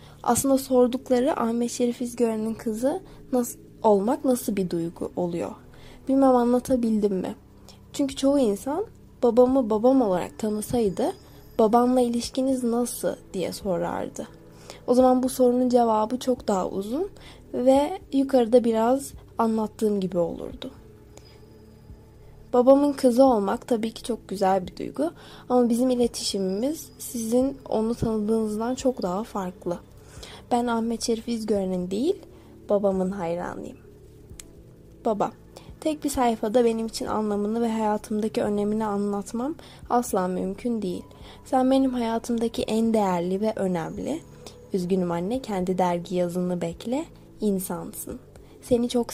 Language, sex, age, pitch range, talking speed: Turkish, female, 10-29, 200-255 Hz, 115 wpm